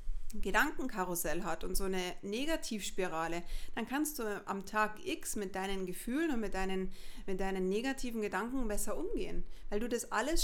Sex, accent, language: female, German, German